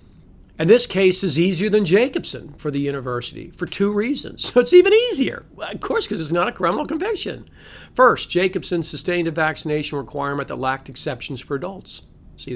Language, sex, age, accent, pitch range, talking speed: English, male, 50-69, American, 135-185 Hz, 175 wpm